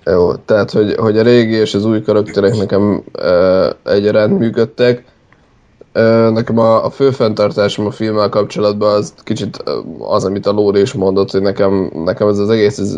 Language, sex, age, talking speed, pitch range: Hungarian, male, 20-39, 175 wpm, 100-110 Hz